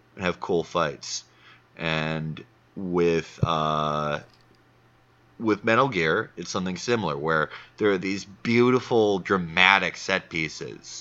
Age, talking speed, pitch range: 30-49, 110 wpm, 80-100 Hz